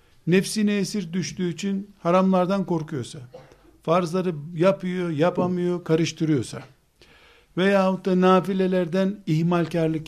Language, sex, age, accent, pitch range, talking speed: Turkish, male, 60-79, native, 140-185 Hz, 85 wpm